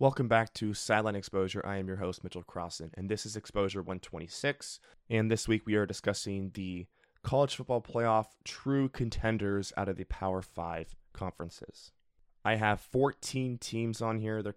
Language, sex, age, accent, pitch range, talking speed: English, male, 20-39, American, 90-110 Hz, 170 wpm